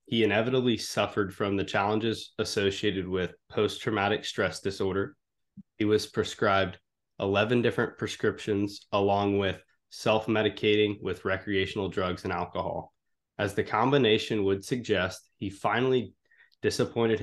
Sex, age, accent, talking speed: male, 20-39, American, 115 wpm